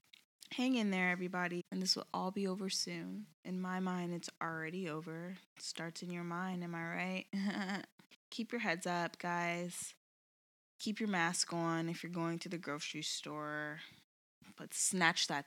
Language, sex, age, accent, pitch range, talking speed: English, female, 20-39, American, 160-205 Hz, 165 wpm